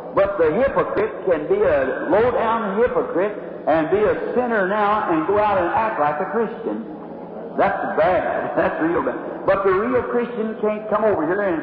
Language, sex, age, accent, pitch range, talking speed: English, male, 60-79, American, 190-255 Hz, 185 wpm